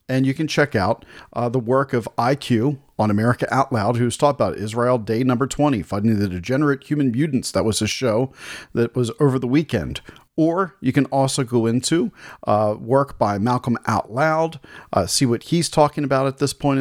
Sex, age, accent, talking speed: male, 40-59, American, 200 wpm